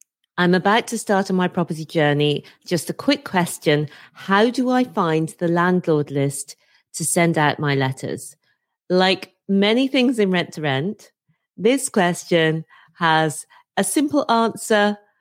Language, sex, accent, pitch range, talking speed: English, female, British, 155-195 Hz, 145 wpm